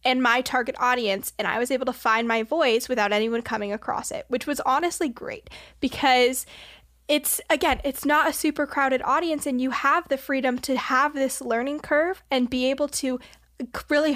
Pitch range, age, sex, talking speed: 235-280 Hz, 10-29, female, 190 wpm